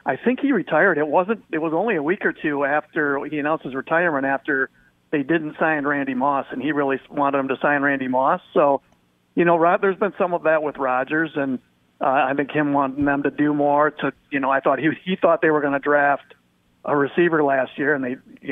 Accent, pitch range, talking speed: American, 135-165 Hz, 240 wpm